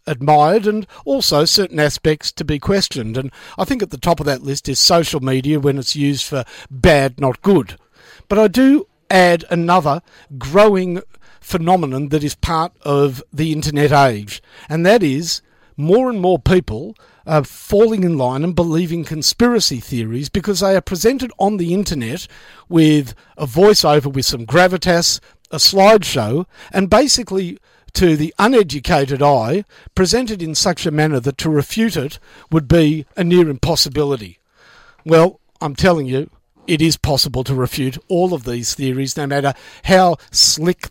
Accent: Australian